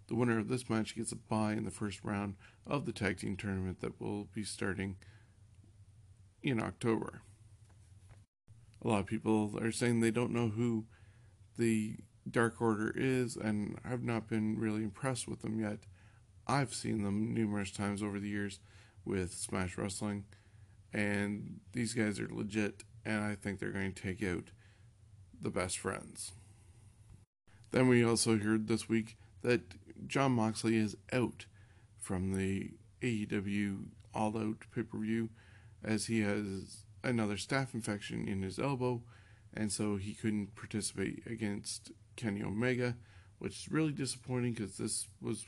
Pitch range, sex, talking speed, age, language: 100-115 Hz, male, 150 wpm, 40-59, English